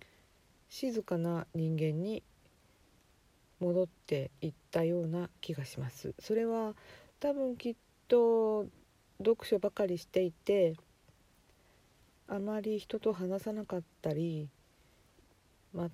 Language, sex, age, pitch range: Japanese, female, 50-69, 155-195 Hz